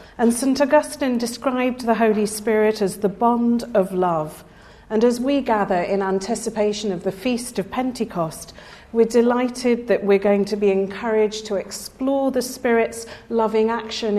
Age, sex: 40-59, female